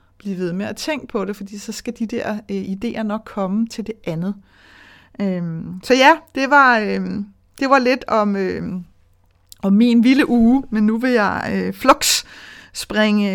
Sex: female